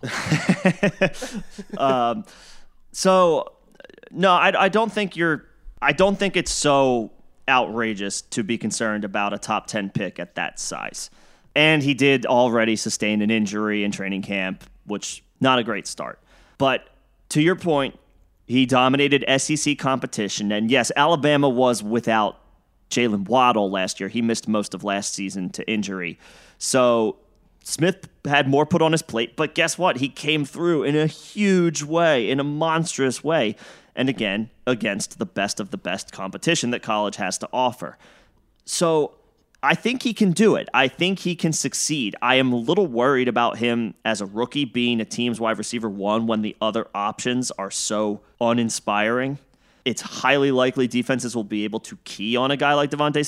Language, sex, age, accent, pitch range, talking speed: English, male, 30-49, American, 110-155 Hz, 170 wpm